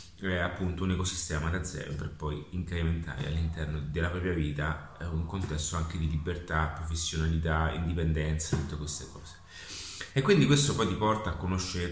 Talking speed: 150 wpm